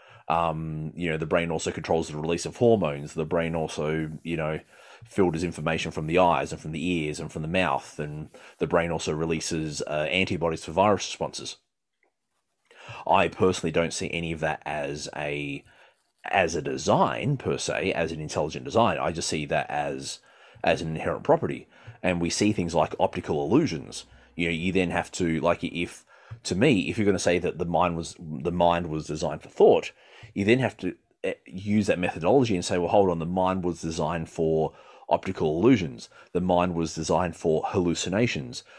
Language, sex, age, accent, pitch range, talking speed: English, male, 30-49, Australian, 80-90 Hz, 190 wpm